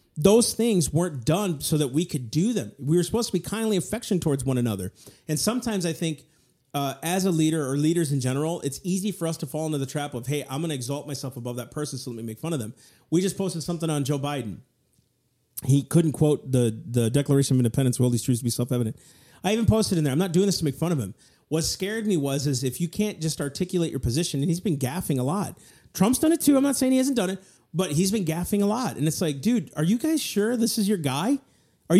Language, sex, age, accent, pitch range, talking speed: English, male, 40-59, American, 140-205 Hz, 265 wpm